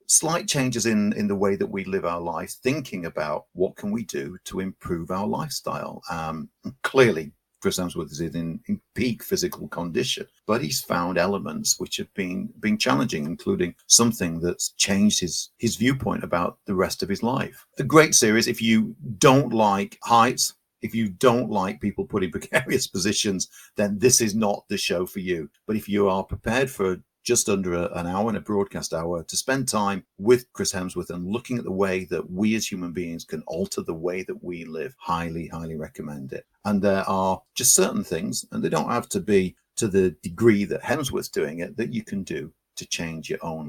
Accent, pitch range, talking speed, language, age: British, 90-130 Hz, 200 wpm, English, 50-69